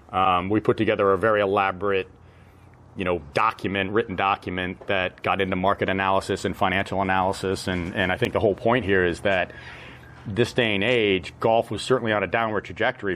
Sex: male